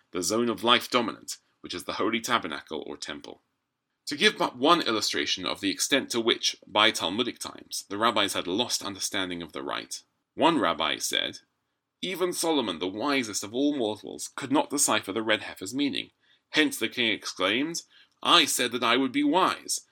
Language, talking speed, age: English, 185 wpm, 30-49